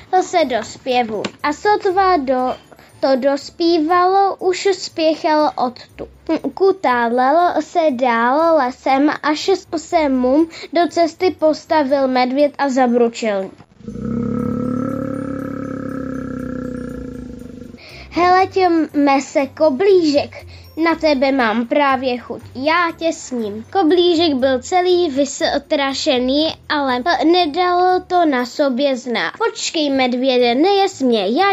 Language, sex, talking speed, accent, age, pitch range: Czech, female, 95 wpm, native, 10-29, 265-340 Hz